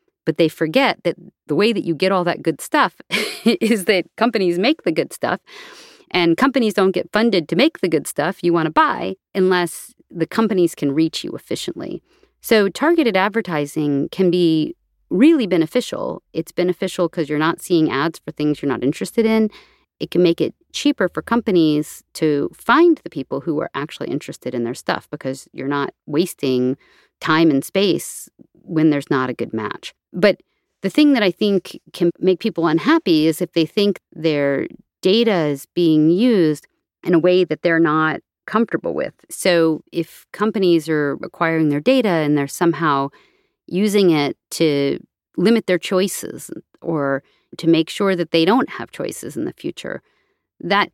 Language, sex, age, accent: English, female, 40-59, American